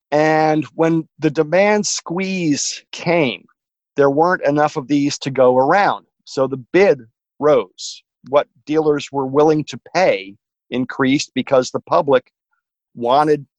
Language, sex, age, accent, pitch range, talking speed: English, male, 50-69, American, 130-165 Hz, 130 wpm